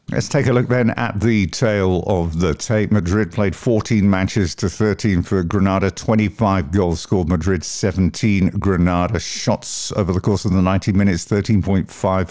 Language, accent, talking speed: English, British, 165 wpm